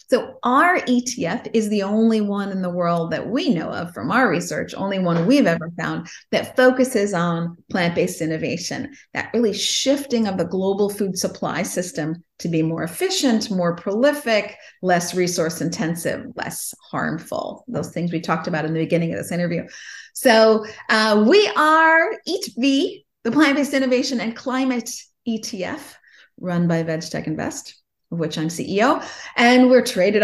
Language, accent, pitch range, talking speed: English, American, 180-245 Hz, 155 wpm